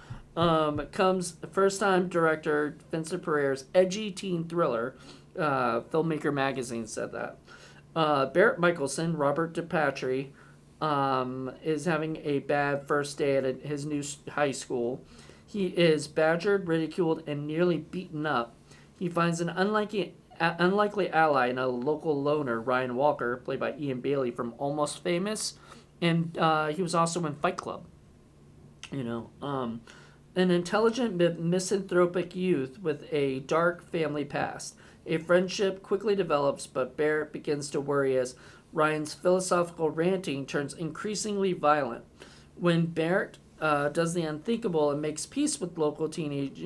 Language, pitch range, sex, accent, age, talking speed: English, 140-175 Hz, male, American, 40-59, 140 wpm